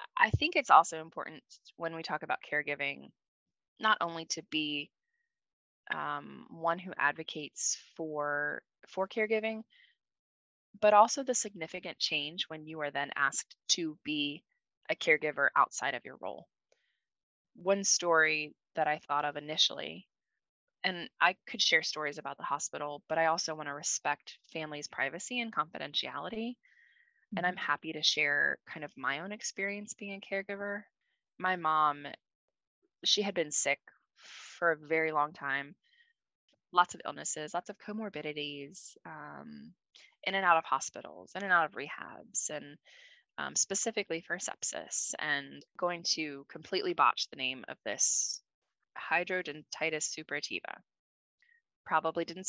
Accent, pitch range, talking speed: American, 150-220 Hz, 140 wpm